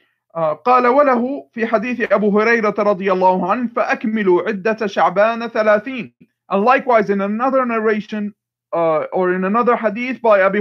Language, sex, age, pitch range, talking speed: English, male, 40-59, 170-210 Hz, 145 wpm